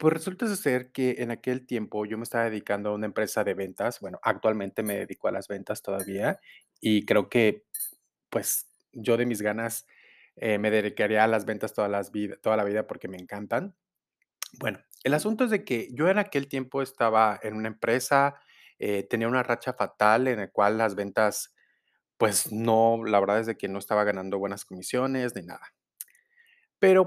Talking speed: 185 wpm